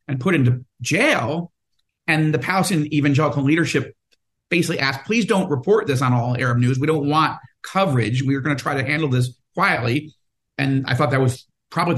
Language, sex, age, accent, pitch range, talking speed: English, male, 50-69, American, 135-175 Hz, 190 wpm